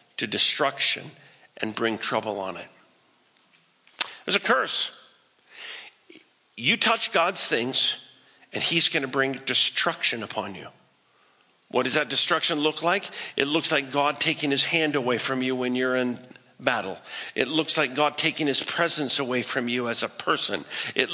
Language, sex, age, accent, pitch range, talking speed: English, male, 50-69, American, 135-170 Hz, 160 wpm